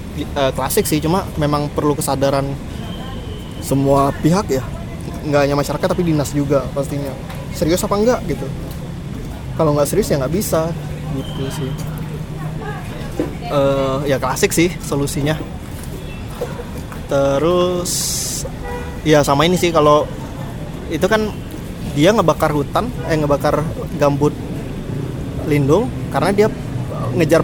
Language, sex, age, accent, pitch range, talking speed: Indonesian, male, 20-39, native, 140-165 Hz, 115 wpm